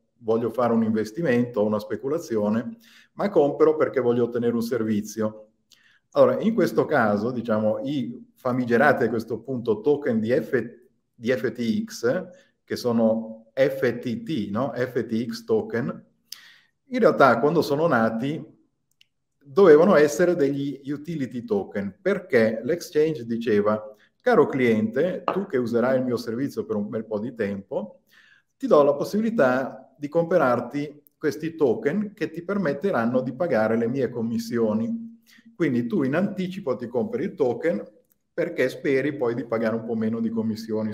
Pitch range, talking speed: 110-170 Hz, 140 wpm